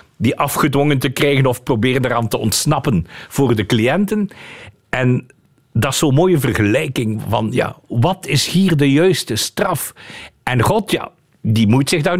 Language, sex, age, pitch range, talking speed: Dutch, male, 50-69, 125-180 Hz, 160 wpm